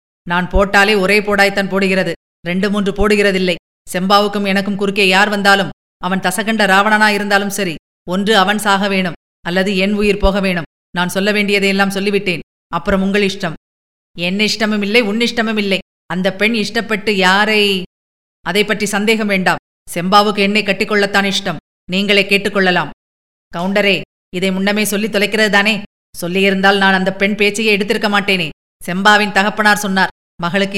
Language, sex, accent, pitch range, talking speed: Tamil, female, native, 190-215 Hz, 135 wpm